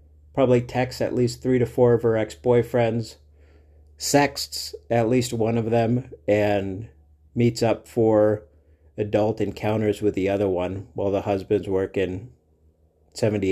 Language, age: English, 50-69